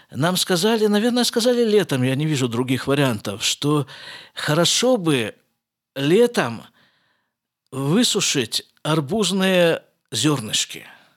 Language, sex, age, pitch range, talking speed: Russian, male, 50-69, 125-185 Hz, 90 wpm